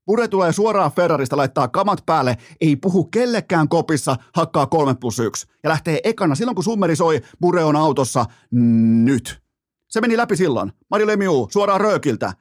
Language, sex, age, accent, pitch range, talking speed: Finnish, male, 30-49, native, 140-195 Hz, 155 wpm